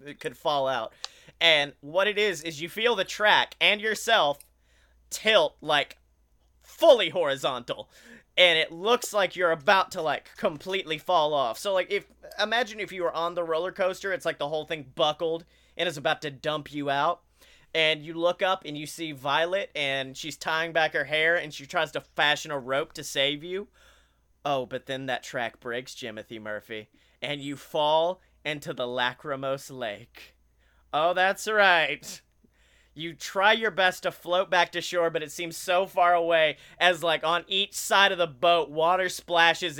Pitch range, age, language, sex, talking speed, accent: 140-180 Hz, 30-49, English, male, 180 wpm, American